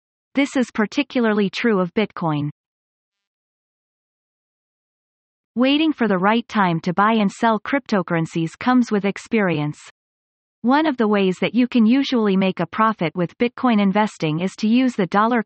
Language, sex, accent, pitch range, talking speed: English, female, American, 185-235 Hz, 150 wpm